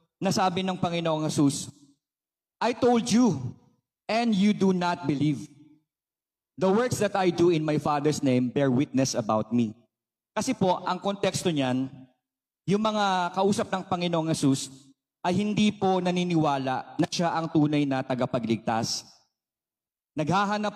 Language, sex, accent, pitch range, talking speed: Filipino, male, native, 135-195 Hz, 135 wpm